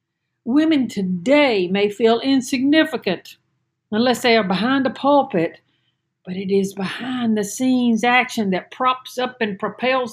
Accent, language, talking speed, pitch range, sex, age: American, English, 125 wpm, 180-245 Hz, female, 60-79